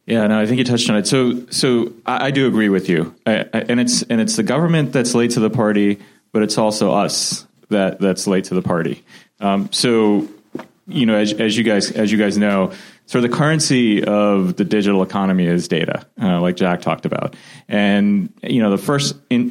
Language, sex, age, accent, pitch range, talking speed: English, male, 30-49, American, 100-125 Hz, 220 wpm